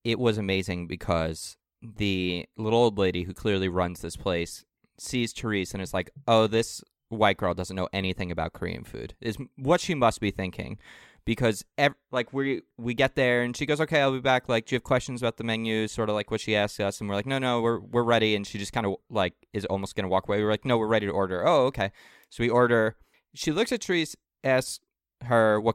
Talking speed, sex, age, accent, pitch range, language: 235 wpm, male, 20-39, American, 95-120 Hz, English